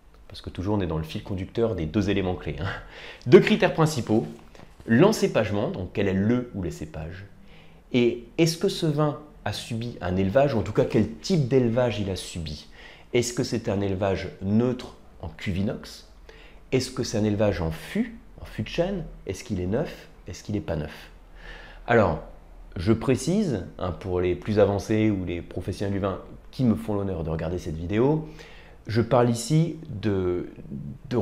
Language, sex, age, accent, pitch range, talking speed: French, male, 30-49, French, 90-145 Hz, 190 wpm